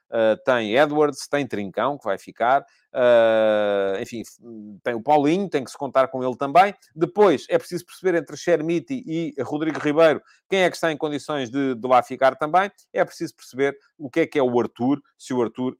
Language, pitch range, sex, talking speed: Portuguese, 115-150 Hz, male, 200 wpm